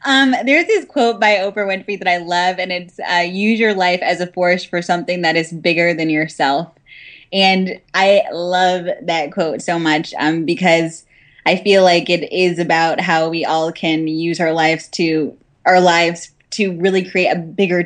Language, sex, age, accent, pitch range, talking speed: English, female, 10-29, American, 165-185 Hz, 190 wpm